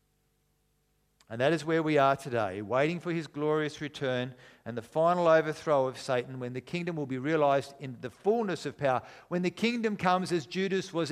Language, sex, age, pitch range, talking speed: English, male, 50-69, 130-165 Hz, 195 wpm